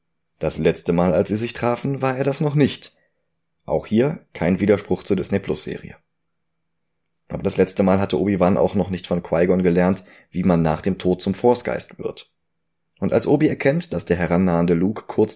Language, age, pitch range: German, 30-49, 90-110 Hz